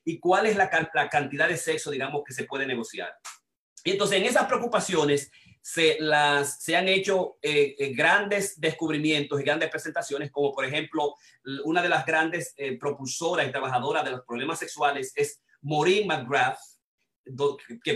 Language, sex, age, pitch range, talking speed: Spanish, male, 30-49, 145-175 Hz, 160 wpm